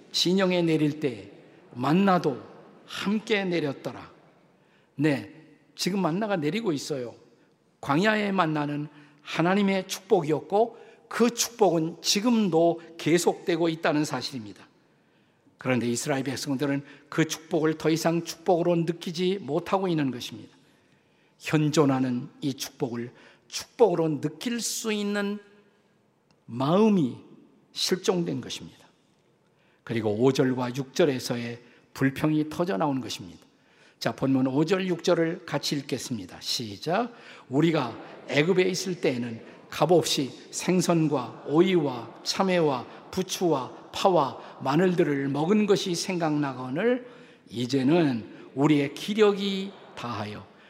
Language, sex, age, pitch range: Korean, male, 50-69, 140-190 Hz